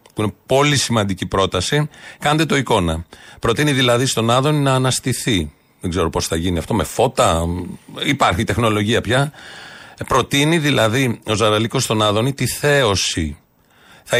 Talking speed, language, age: 145 wpm, Greek, 40-59